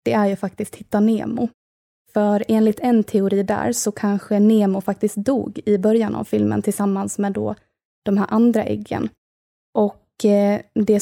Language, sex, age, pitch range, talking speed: Swedish, female, 20-39, 200-225 Hz, 160 wpm